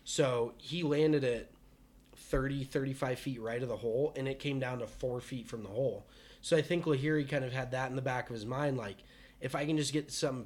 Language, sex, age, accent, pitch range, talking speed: English, male, 20-39, American, 125-150 Hz, 240 wpm